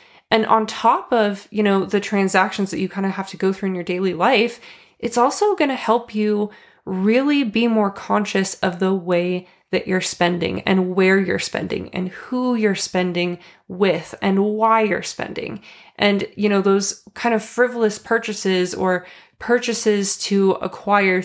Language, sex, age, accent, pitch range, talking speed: English, female, 20-39, American, 190-225 Hz, 170 wpm